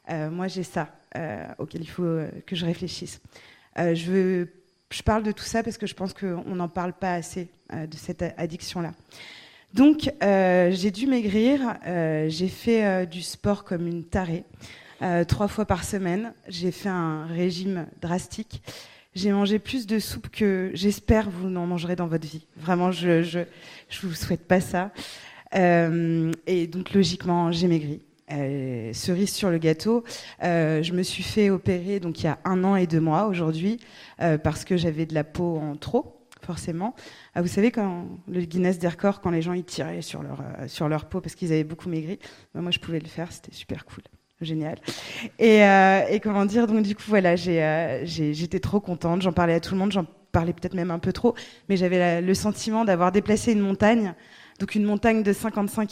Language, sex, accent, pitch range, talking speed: French, female, French, 170-200 Hz, 200 wpm